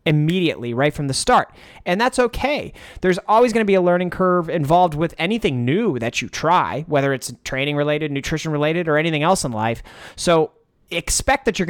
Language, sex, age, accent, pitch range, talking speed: English, male, 30-49, American, 140-180 Hz, 195 wpm